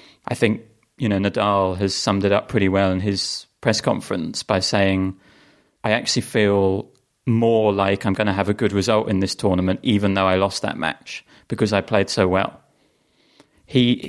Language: English